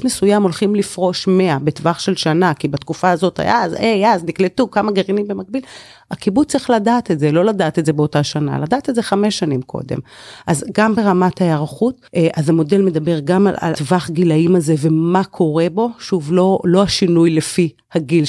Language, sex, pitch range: Hebrew, female, 155-220 Hz